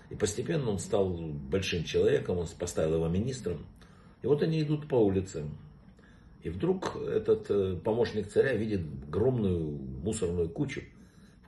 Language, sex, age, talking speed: Russian, male, 60-79, 135 wpm